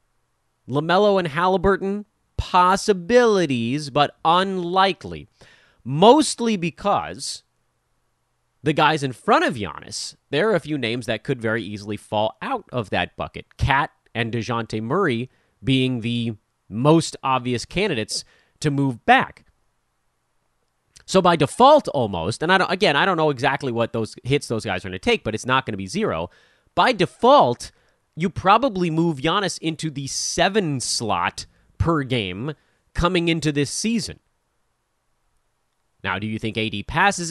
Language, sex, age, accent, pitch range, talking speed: English, male, 30-49, American, 110-175 Hz, 145 wpm